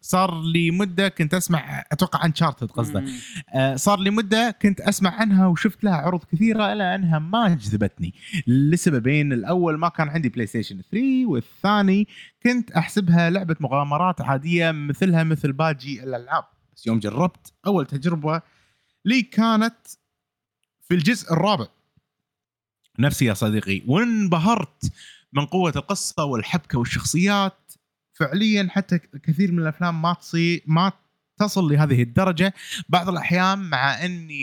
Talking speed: 130 wpm